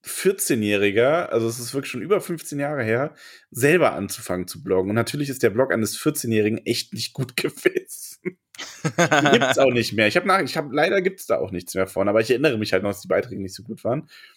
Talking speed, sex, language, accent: 235 wpm, male, German, German